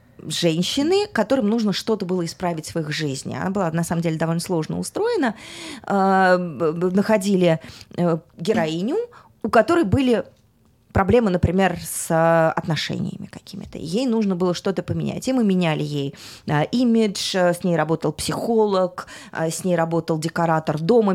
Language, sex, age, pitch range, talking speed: English, female, 20-39, 170-235 Hz, 130 wpm